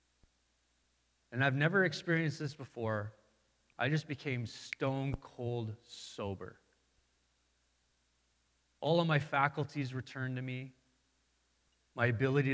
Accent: American